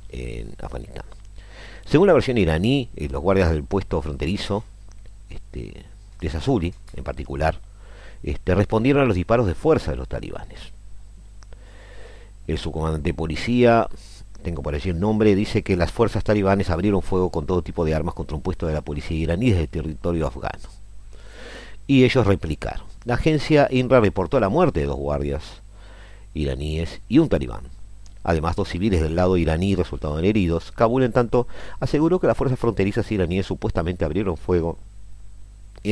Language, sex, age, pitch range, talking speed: Spanish, male, 50-69, 80-105 Hz, 155 wpm